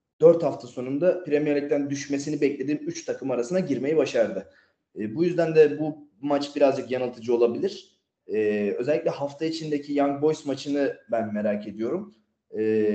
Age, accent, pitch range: 30-49, native, 115-160 Hz